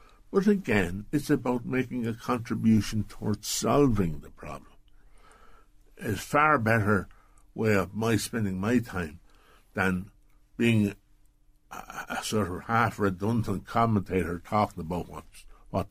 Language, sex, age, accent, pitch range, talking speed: English, male, 60-79, American, 100-125 Hz, 125 wpm